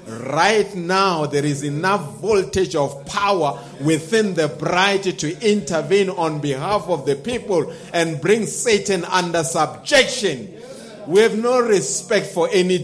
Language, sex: English, male